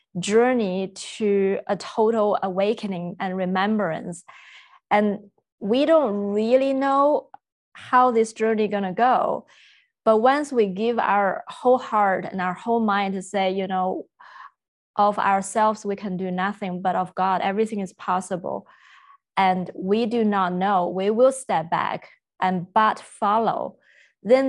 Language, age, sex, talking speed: English, 20-39, female, 140 wpm